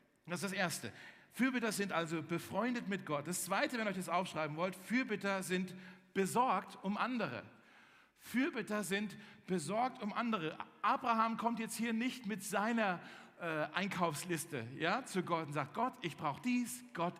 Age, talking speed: 50-69, 160 wpm